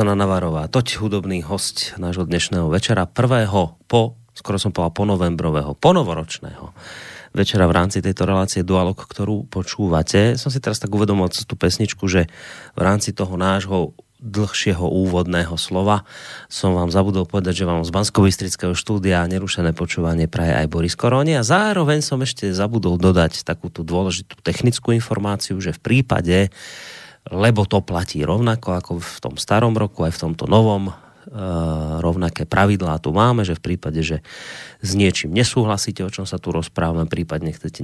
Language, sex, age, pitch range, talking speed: Slovak, male, 30-49, 85-105 Hz, 155 wpm